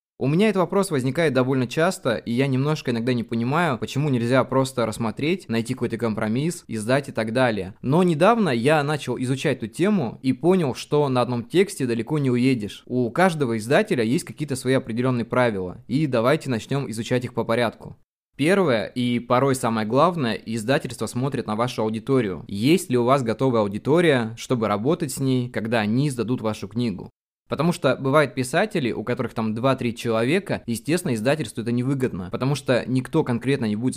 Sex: male